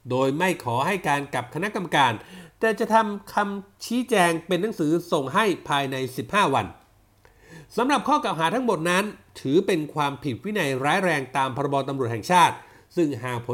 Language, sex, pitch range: Thai, male, 145-190 Hz